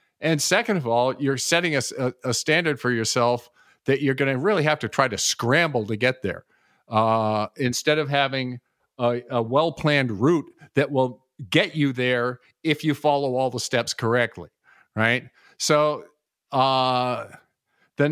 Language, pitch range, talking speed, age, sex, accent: English, 120-145 Hz, 160 wpm, 50-69, male, American